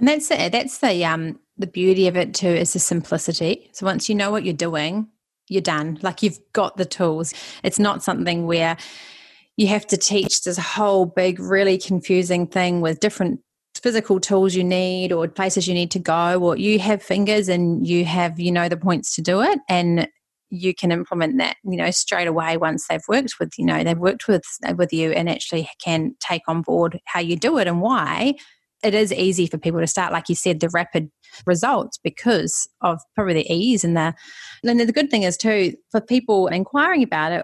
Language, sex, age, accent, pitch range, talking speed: English, female, 30-49, Australian, 170-205 Hz, 210 wpm